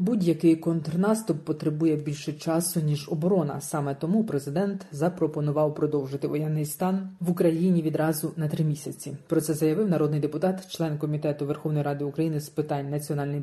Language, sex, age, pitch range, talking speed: Ukrainian, female, 30-49, 150-165 Hz, 145 wpm